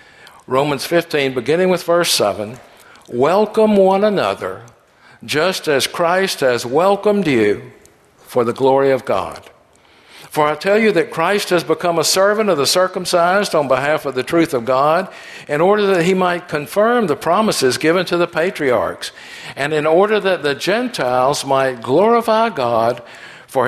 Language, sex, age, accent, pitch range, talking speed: English, male, 60-79, American, 150-205 Hz, 155 wpm